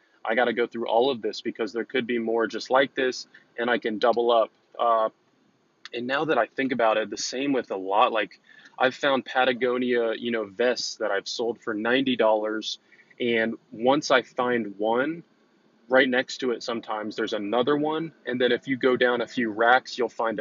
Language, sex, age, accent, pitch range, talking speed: English, male, 20-39, American, 115-130 Hz, 205 wpm